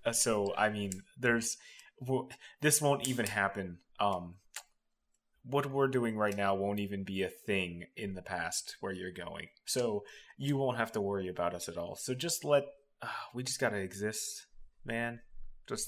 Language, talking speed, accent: English, 180 wpm, American